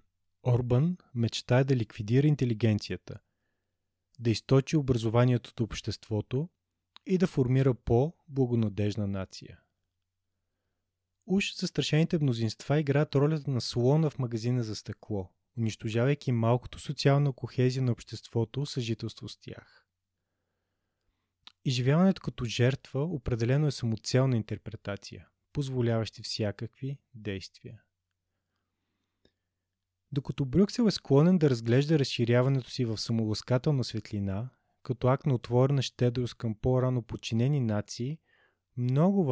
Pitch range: 105-135 Hz